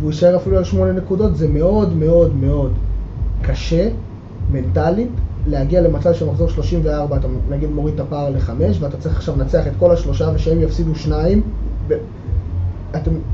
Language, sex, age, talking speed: Hebrew, male, 20-39, 155 wpm